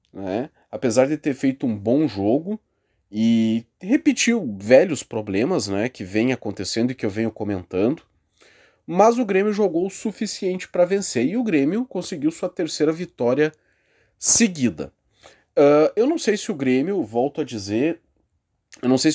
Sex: male